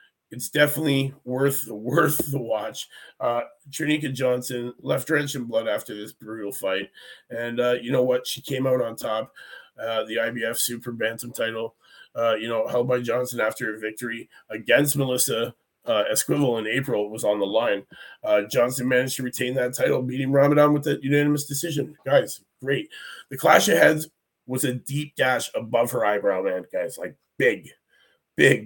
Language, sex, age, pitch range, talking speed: English, male, 30-49, 120-150 Hz, 175 wpm